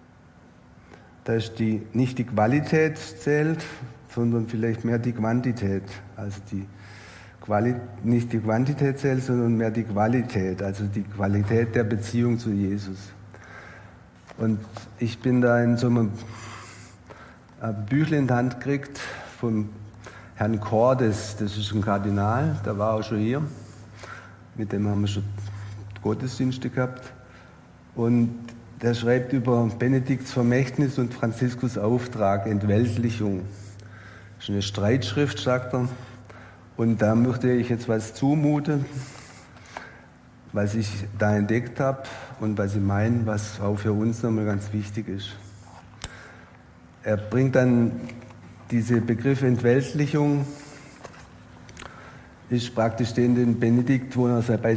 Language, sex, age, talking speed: German, male, 60-79, 125 wpm